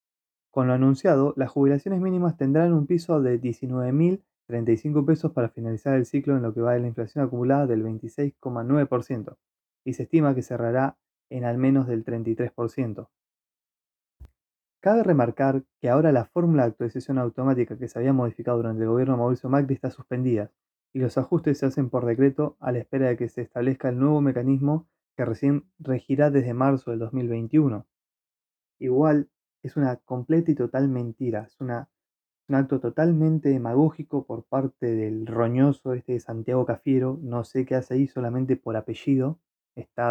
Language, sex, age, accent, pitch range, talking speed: Spanish, male, 20-39, Argentinian, 120-145 Hz, 165 wpm